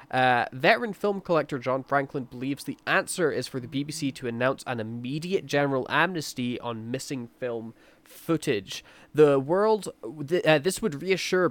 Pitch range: 120-155 Hz